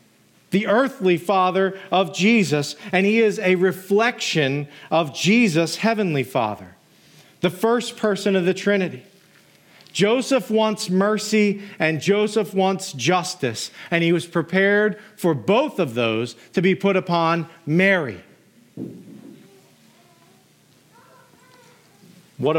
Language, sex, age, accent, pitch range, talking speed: English, male, 40-59, American, 150-200 Hz, 110 wpm